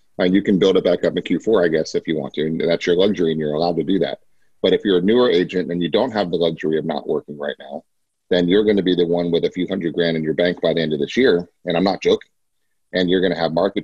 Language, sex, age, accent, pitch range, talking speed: English, male, 30-49, American, 85-100 Hz, 315 wpm